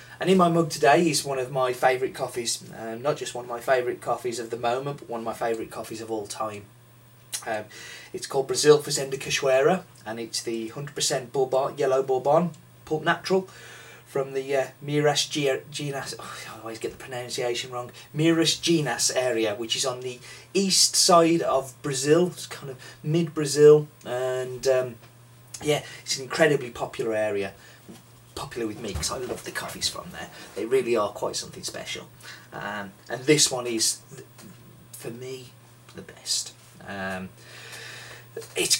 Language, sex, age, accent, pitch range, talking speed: English, male, 30-49, British, 120-155 Hz, 170 wpm